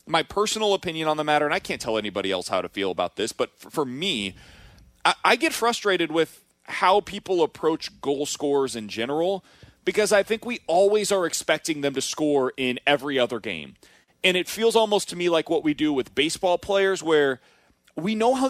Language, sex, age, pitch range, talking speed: English, male, 30-49, 150-195 Hz, 210 wpm